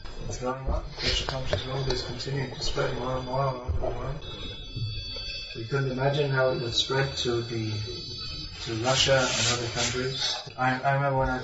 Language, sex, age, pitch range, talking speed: English, male, 30-49, 115-135 Hz, 165 wpm